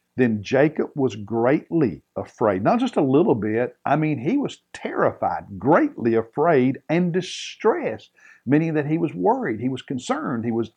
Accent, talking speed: American, 160 wpm